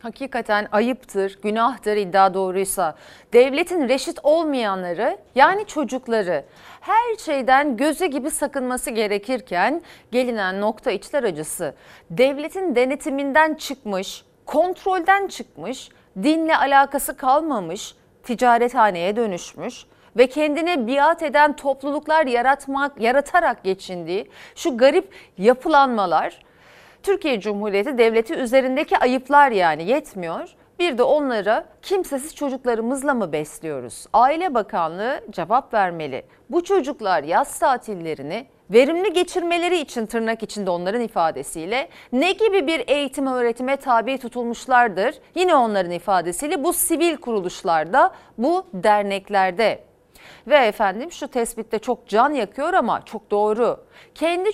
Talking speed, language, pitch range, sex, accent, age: 105 wpm, Turkish, 215-305 Hz, female, native, 40-59